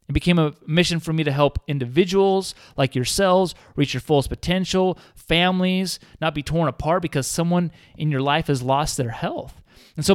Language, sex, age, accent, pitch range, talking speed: English, male, 30-49, American, 135-175 Hz, 185 wpm